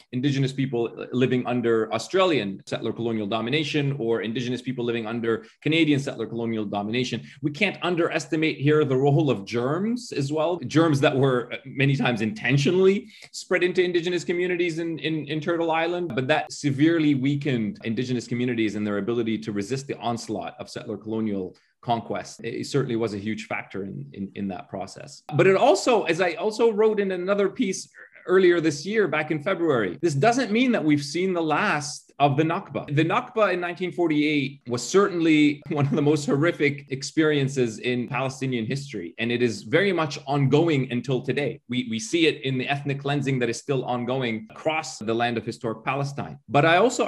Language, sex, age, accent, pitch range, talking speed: English, male, 30-49, Canadian, 120-170 Hz, 180 wpm